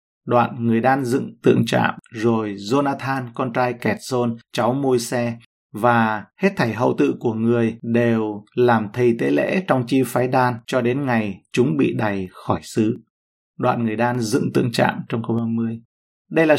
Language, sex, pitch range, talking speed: Vietnamese, male, 115-135 Hz, 180 wpm